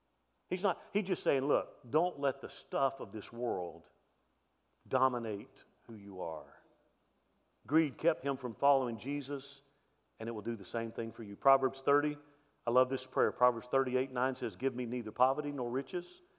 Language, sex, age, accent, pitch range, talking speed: English, male, 50-69, American, 130-175 Hz, 175 wpm